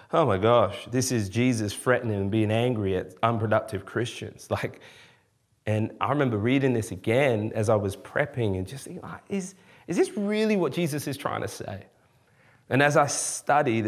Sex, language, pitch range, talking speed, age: male, English, 110-135 Hz, 180 wpm, 30-49